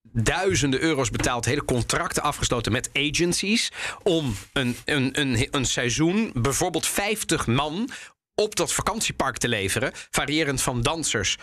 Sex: male